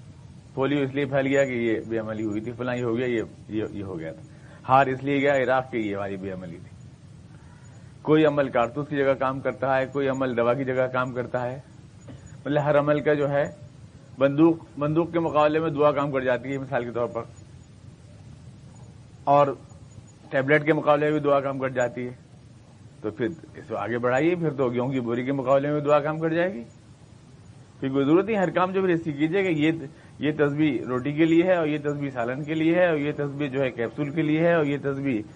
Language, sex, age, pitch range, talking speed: Urdu, male, 40-59, 125-150 Hz, 220 wpm